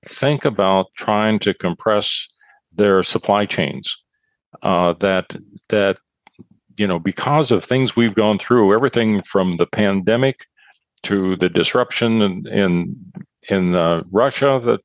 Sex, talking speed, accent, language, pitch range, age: male, 130 wpm, American, English, 100-130 Hz, 50-69